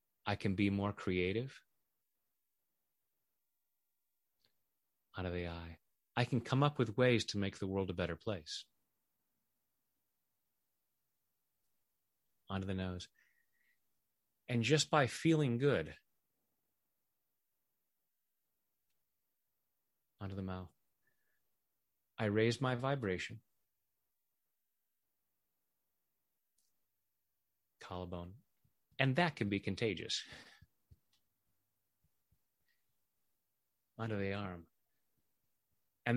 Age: 30-49